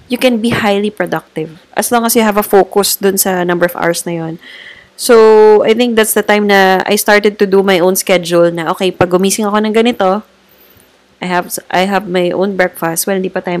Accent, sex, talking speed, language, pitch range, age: Filipino, female, 225 wpm, English, 175-210 Hz, 20-39